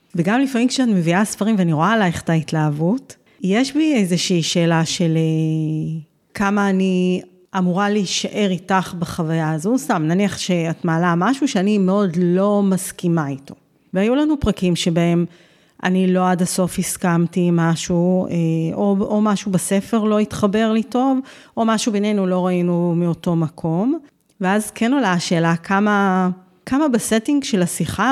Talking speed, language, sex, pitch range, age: 140 wpm, Hebrew, female, 175-210 Hz, 30-49